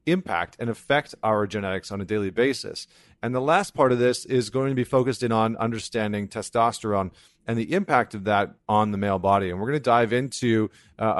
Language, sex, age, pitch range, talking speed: English, male, 40-59, 100-125 Hz, 215 wpm